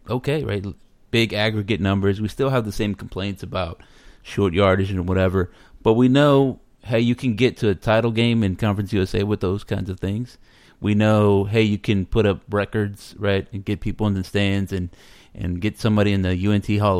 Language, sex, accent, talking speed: English, male, American, 205 wpm